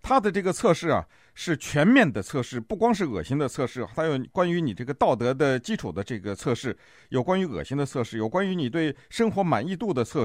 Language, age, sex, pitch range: Chinese, 50-69, male, 120-185 Hz